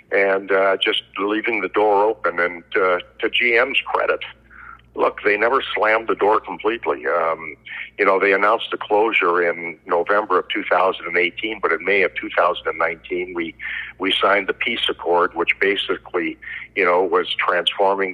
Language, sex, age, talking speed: English, male, 50-69, 155 wpm